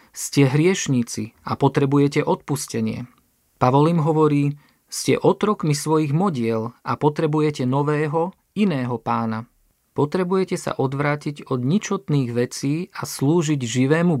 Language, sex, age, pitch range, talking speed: Slovak, male, 40-59, 125-160 Hz, 110 wpm